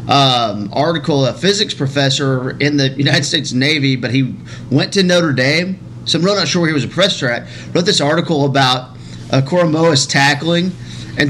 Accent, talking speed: American, 185 wpm